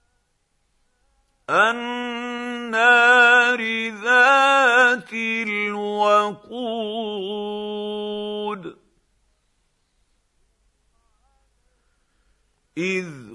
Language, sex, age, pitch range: Arabic, male, 50-69, 210-250 Hz